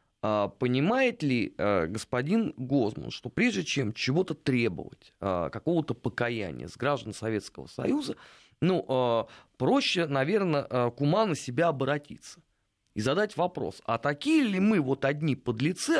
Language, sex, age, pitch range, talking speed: Russian, male, 30-49, 115-170 Hz, 120 wpm